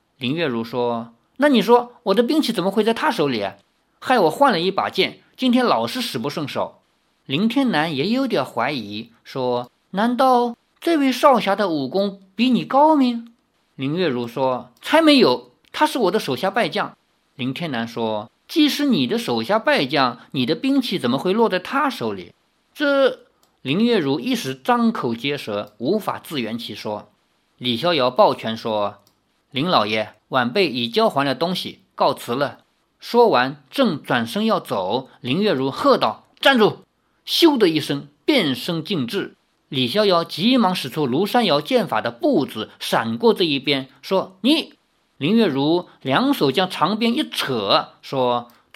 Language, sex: Chinese, male